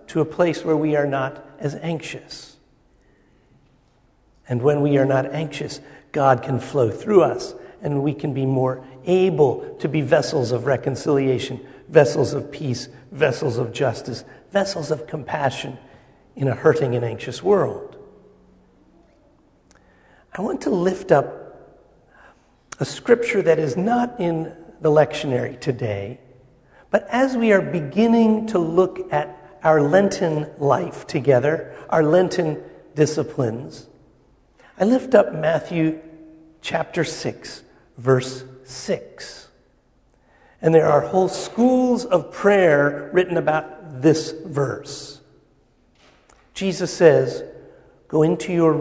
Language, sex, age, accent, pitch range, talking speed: English, male, 50-69, American, 135-185 Hz, 120 wpm